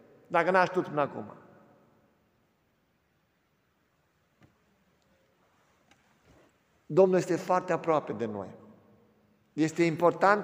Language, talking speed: Romanian, 80 wpm